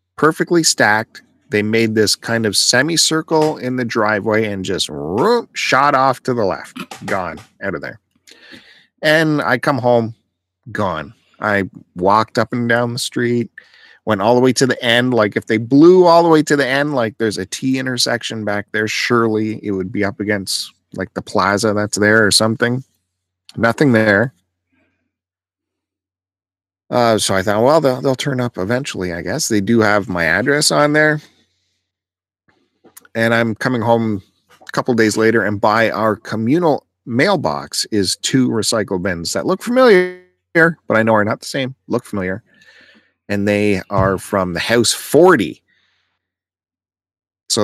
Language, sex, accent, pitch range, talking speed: English, male, American, 95-125 Hz, 160 wpm